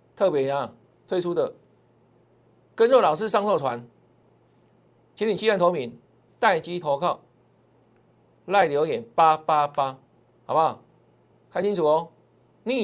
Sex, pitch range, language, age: male, 140-195 Hz, Chinese, 50-69